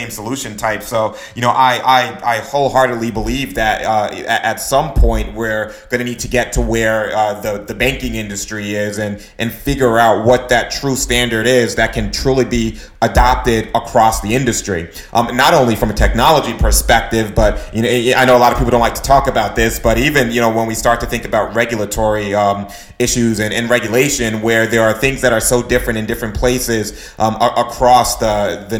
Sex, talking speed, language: male, 205 wpm, English